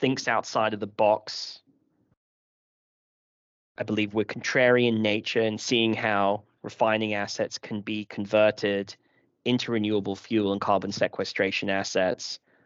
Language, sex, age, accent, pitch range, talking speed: English, male, 10-29, British, 100-110 Hz, 125 wpm